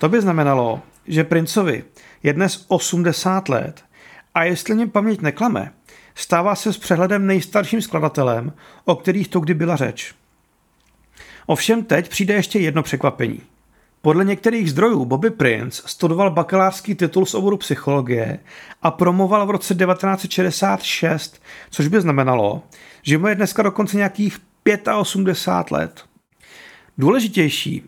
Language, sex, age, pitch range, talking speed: Czech, male, 40-59, 160-205 Hz, 130 wpm